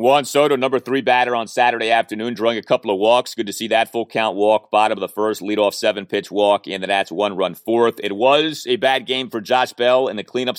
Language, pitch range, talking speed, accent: English, 105-140 Hz, 255 wpm, American